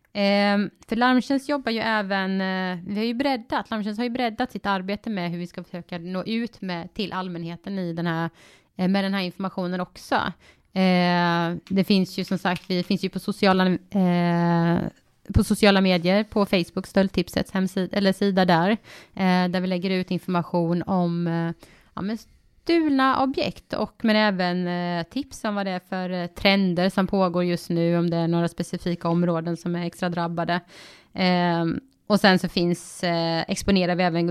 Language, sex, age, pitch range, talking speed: Swedish, female, 20-39, 170-200 Hz, 180 wpm